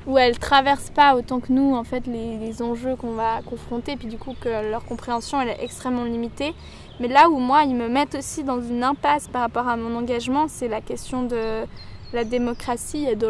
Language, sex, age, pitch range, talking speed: French, female, 10-29, 225-260 Hz, 220 wpm